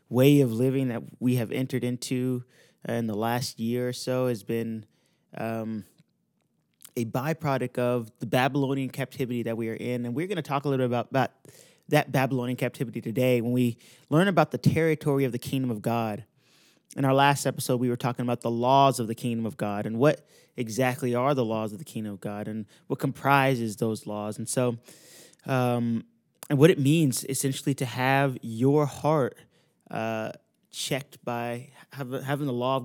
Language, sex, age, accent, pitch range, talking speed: English, male, 20-39, American, 120-140 Hz, 190 wpm